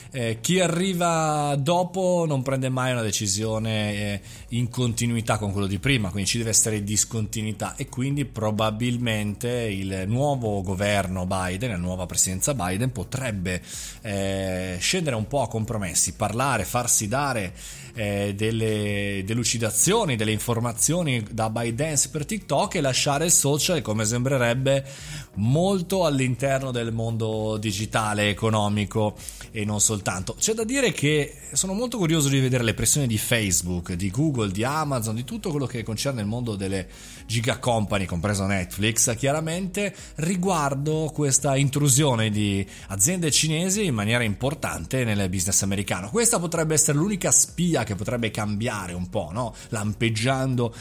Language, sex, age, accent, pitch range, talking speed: Italian, male, 30-49, native, 105-140 Hz, 140 wpm